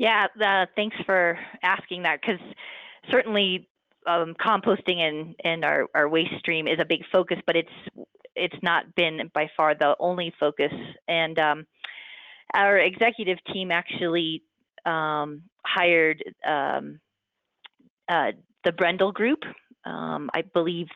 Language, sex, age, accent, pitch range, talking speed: English, female, 30-49, American, 155-190 Hz, 130 wpm